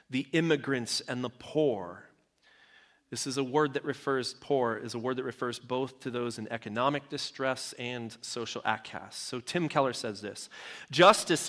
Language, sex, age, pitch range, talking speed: English, male, 30-49, 125-160 Hz, 165 wpm